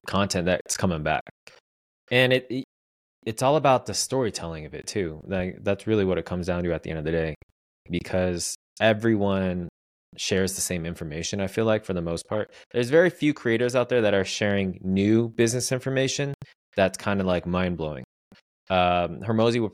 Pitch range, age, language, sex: 85-105 Hz, 20-39, English, male